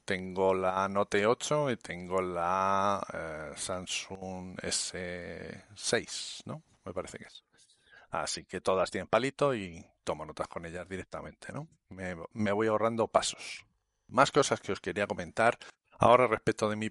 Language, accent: Spanish, Spanish